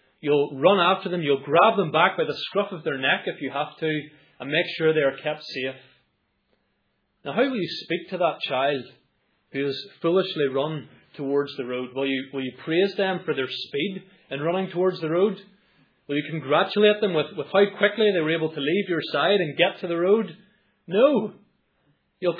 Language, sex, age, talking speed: English, male, 30-49, 205 wpm